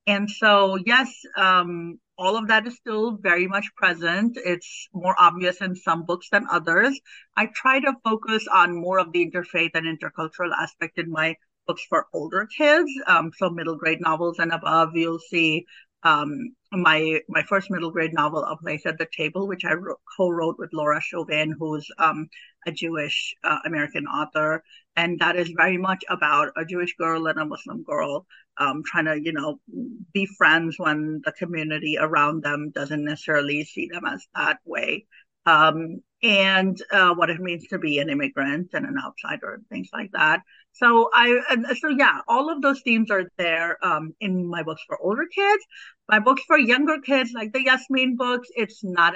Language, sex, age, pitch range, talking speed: English, female, 50-69, 165-215 Hz, 185 wpm